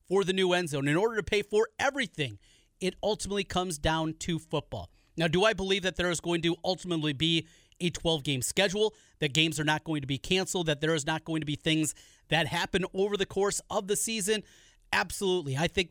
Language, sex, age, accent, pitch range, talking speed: English, male, 30-49, American, 155-195 Hz, 220 wpm